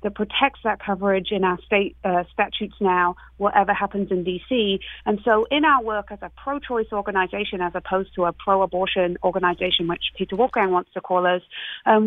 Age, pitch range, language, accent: 40-59, 195-235 Hz, English, British